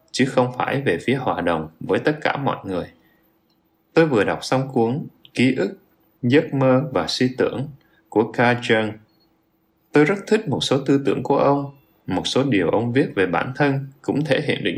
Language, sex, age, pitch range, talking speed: Vietnamese, male, 20-39, 110-145 Hz, 195 wpm